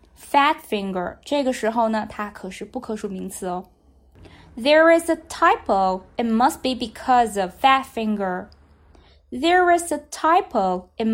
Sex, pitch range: female, 200-310 Hz